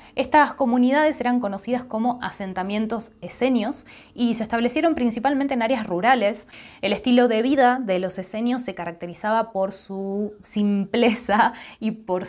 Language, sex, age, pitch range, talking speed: Spanish, female, 20-39, 185-230 Hz, 135 wpm